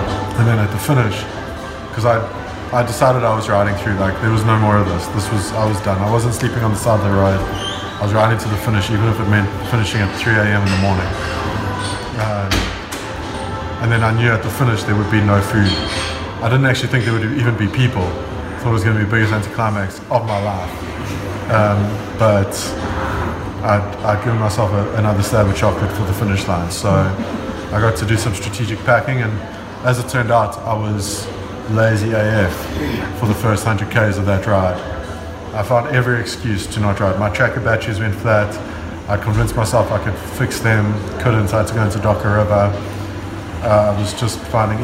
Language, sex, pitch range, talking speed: English, male, 100-110 Hz, 210 wpm